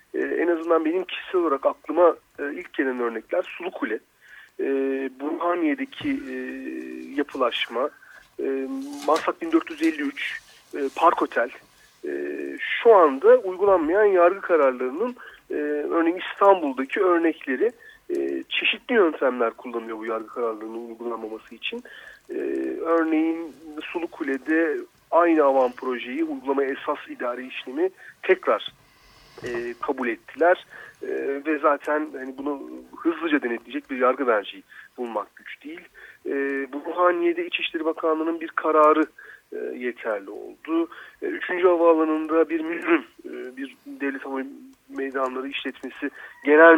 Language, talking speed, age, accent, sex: Turkish, 120 wpm, 40-59, native, male